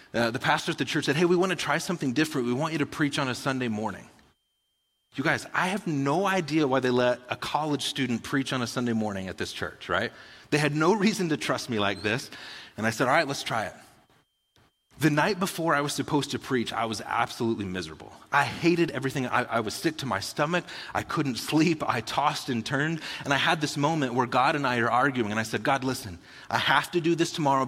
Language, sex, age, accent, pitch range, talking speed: English, male, 30-49, American, 120-155 Hz, 245 wpm